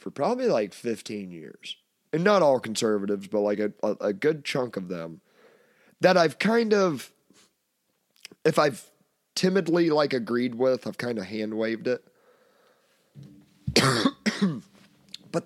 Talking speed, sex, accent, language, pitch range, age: 130 wpm, male, American, English, 110-155 Hz, 30-49